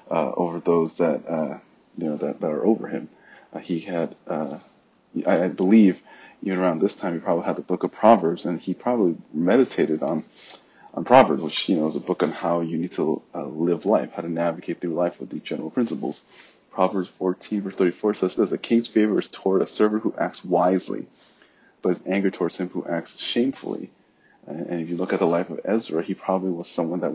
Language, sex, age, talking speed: English, male, 30-49, 220 wpm